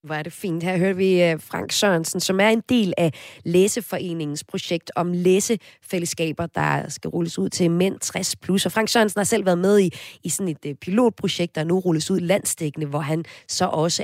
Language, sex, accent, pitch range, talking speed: Danish, female, native, 155-190 Hz, 195 wpm